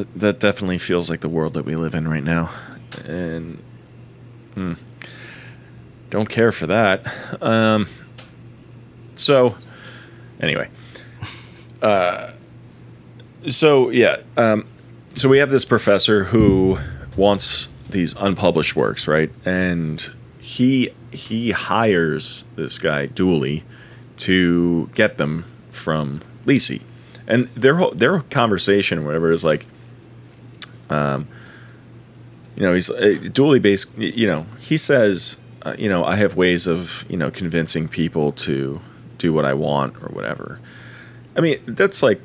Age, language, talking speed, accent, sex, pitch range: 30-49, English, 120 wpm, American, male, 85-120 Hz